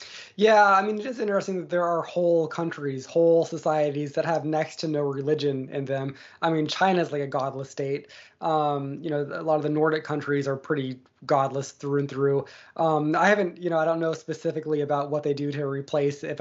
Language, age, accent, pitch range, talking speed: English, 20-39, American, 145-170 Hz, 215 wpm